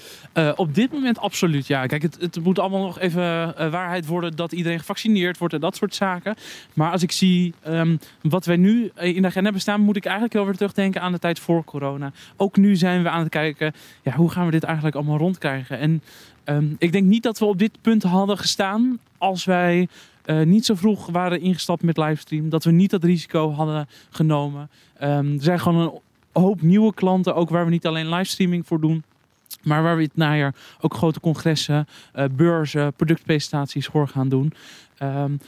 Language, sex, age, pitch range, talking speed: Dutch, male, 20-39, 155-190 Hz, 200 wpm